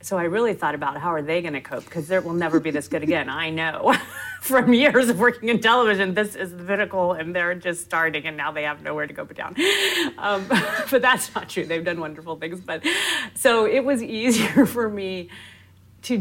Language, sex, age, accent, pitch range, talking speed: English, female, 40-59, American, 145-195 Hz, 225 wpm